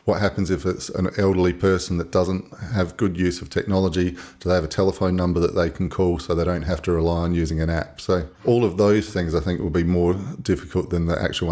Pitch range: 85-100 Hz